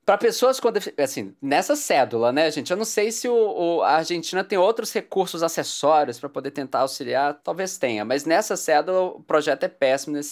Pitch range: 155-220 Hz